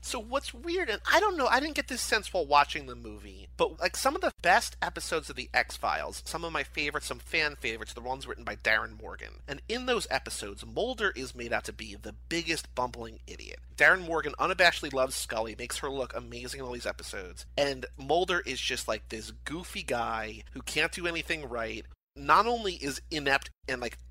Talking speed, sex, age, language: 210 wpm, male, 30-49, English